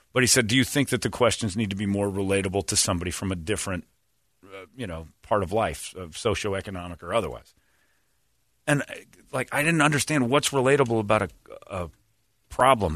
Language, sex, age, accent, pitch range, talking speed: English, male, 40-59, American, 105-145 Hz, 185 wpm